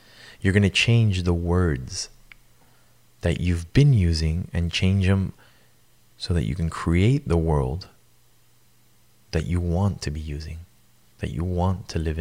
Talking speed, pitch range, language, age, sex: 150 wpm, 85-105 Hz, English, 20-39, male